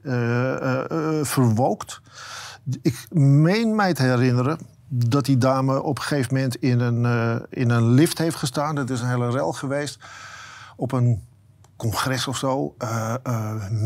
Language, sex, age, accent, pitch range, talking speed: Dutch, male, 50-69, Dutch, 120-140 Hz, 155 wpm